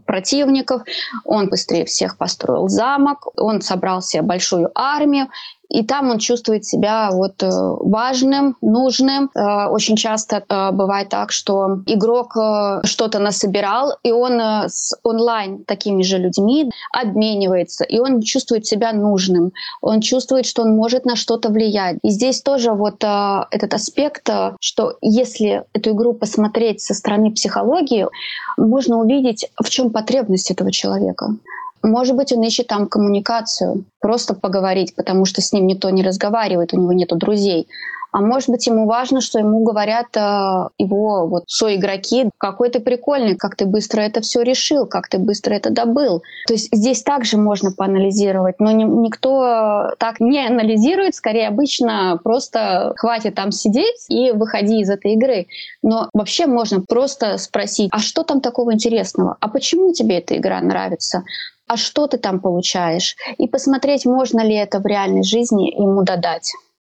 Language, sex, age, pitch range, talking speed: Russian, female, 20-39, 200-245 Hz, 150 wpm